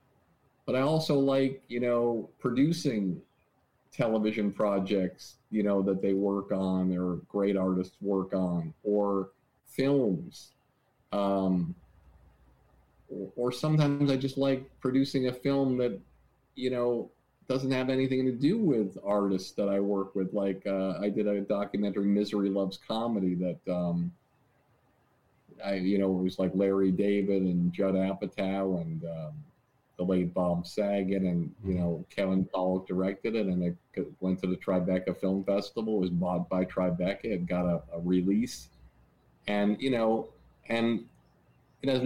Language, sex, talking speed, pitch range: English, male, 150 wpm, 95-125 Hz